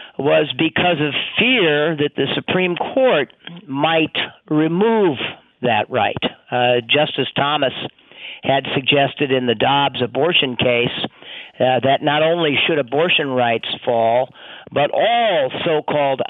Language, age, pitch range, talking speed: English, 50-69, 125-160 Hz, 120 wpm